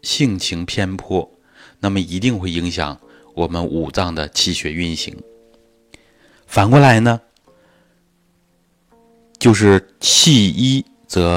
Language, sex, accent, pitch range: Chinese, male, native, 90-125 Hz